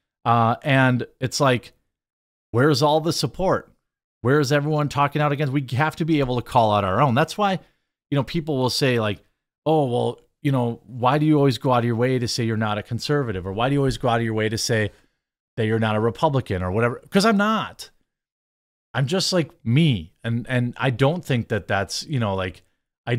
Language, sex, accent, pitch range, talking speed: English, male, American, 105-135 Hz, 230 wpm